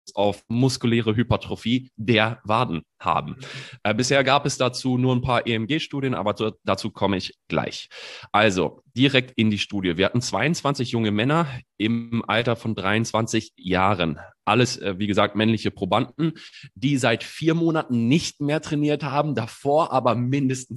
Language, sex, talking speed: German, male, 145 wpm